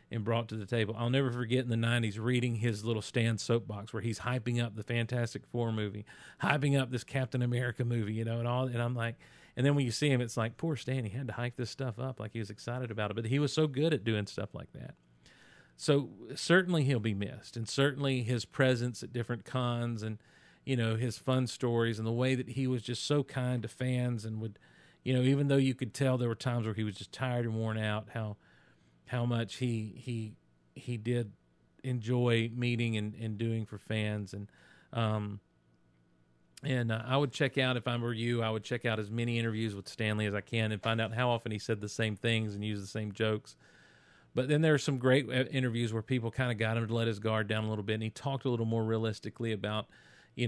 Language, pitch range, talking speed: English, 110-125 Hz, 240 wpm